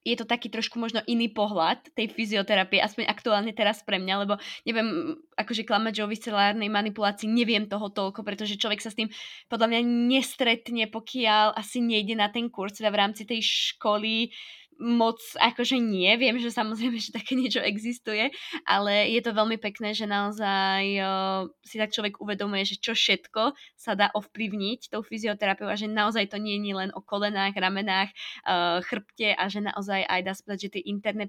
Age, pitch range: 20-39, 200-235 Hz